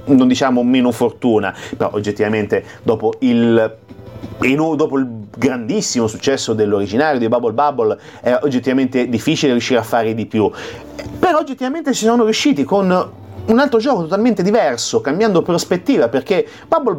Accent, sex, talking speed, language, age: native, male, 140 wpm, Italian, 30-49